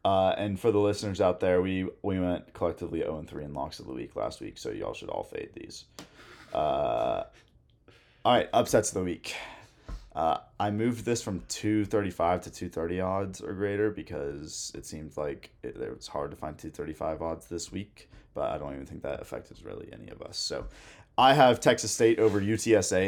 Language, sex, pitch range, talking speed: English, male, 90-110 Hz, 210 wpm